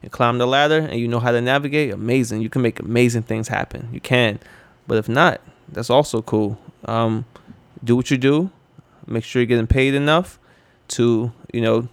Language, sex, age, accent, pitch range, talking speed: English, male, 20-39, American, 115-130 Hz, 195 wpm